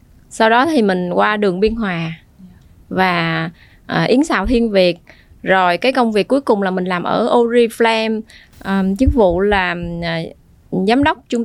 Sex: female